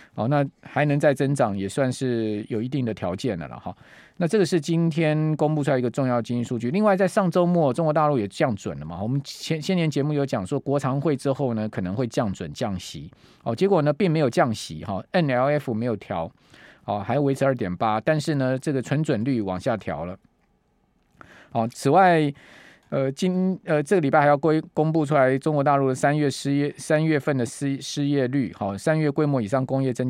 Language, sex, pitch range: Chinese, male, 120-155 Hz